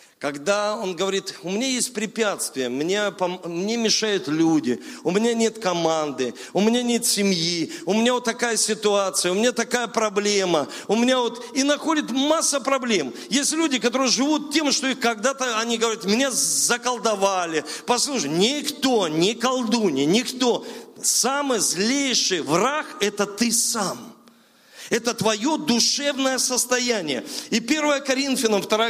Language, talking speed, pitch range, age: Russian, 135 wpm, 210-280 Hz, 40-59